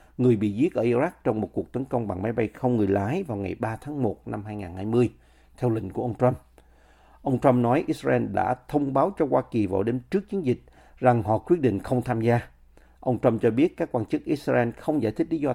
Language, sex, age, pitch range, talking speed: Vietnamese, male, 50-69, 105-135 Hz, 245 wpm